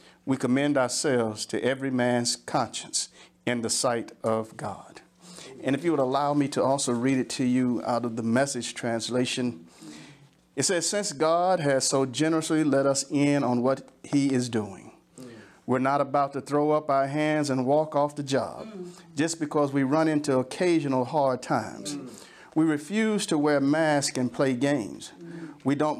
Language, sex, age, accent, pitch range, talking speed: English, male, 50-69, American, 120-150 Hz, 175 wpm